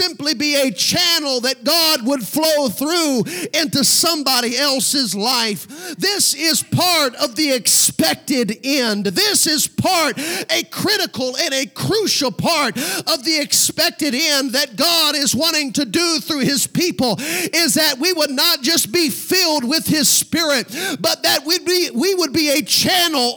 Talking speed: 160 wpm